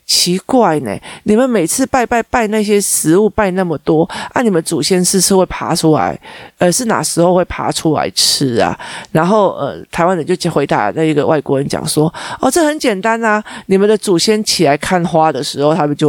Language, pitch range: Chinese, 150-200 Hz